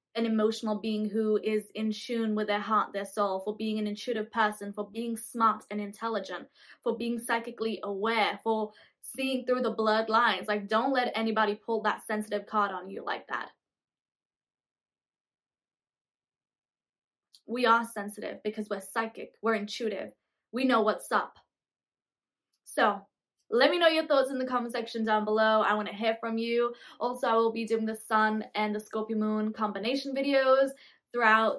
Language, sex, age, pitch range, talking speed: English, female, 10-29, 210-235 Hz, 165 wpm